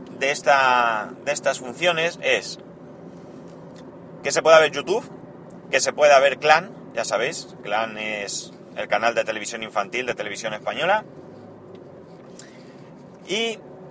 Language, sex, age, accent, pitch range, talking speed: Spanish, male, 30-49, Spanish, 115-175 Hz, 125 wpm